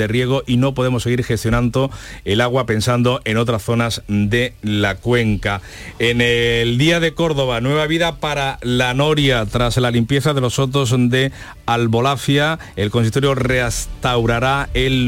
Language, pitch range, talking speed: Spanish, 110-135 Hz, 150 wpm